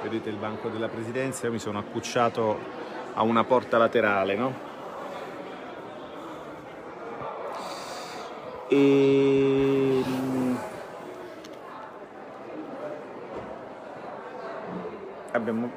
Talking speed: 60 wpm